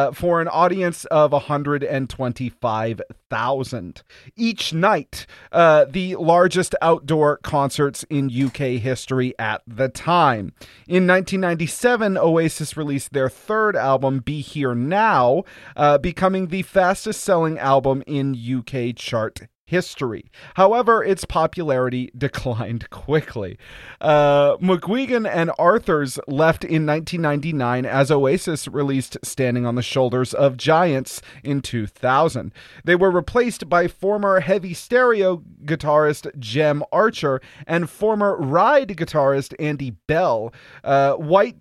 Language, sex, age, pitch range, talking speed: English, male, 30-49, 130-180 Hz, 115 wpm